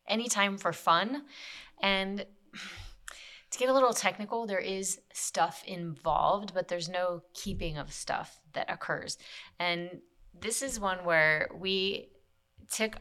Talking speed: 130 wpm